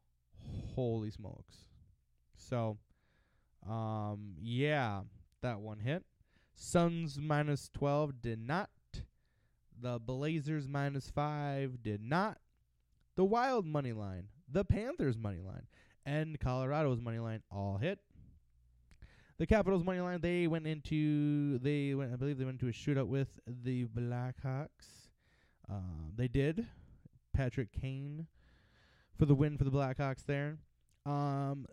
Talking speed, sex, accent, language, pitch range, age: 120 wpm, male, American, English, 110-145 Hz, 20-39